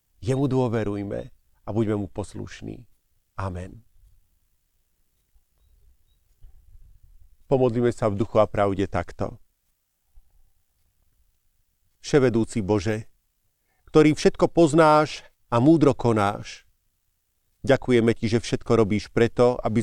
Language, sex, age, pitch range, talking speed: Slovak, male, 40-59, 95-130 Hz, 90 wpm